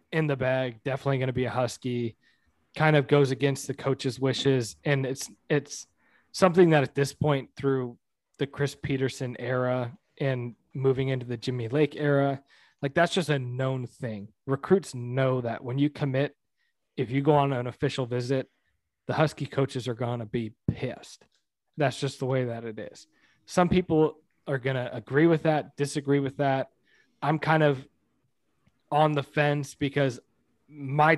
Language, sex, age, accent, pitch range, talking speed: English, male, 20-39, American, 125-145 Hz, 170 wpm